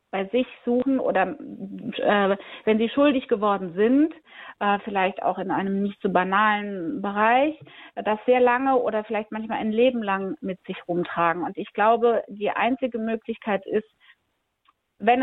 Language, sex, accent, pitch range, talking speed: German, female, German, 195-235 Hz, 160 wpm